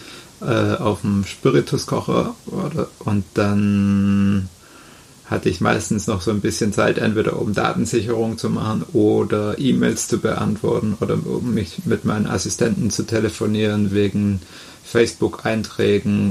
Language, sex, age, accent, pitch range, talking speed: German, male, 30-49, German, 100-110 Hz, 120 wpm